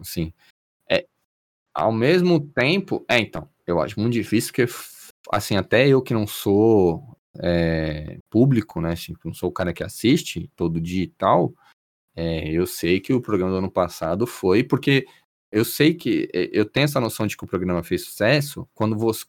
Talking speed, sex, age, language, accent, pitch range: 185 wpm, male, 20-39, Portuguese, Brazilian, 85-125 Hz